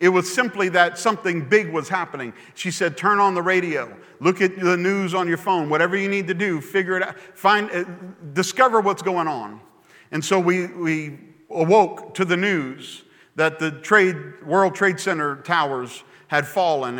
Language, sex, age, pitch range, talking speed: English, male, 50-69, 160-200 Hz, 180 wpm